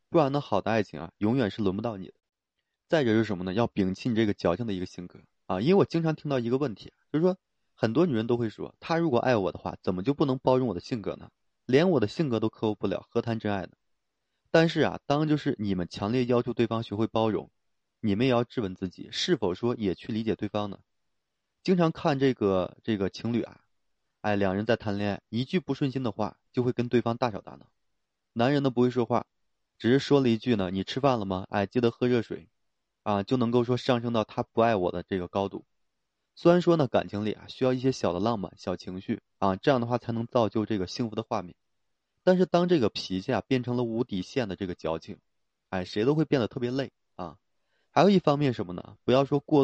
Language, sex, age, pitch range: Chinese, male, 20-39, 100-130 Hz